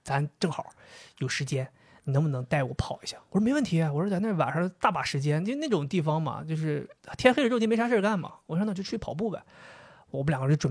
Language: Chinese